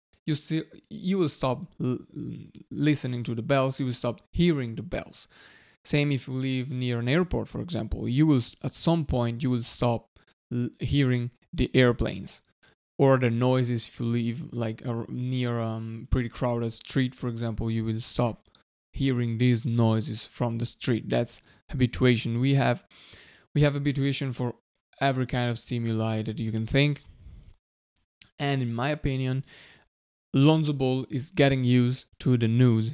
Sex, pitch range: male, 115-140 Hz